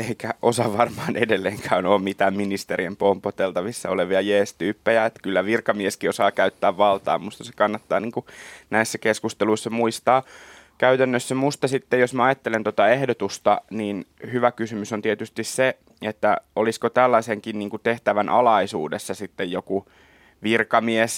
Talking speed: 130 wpm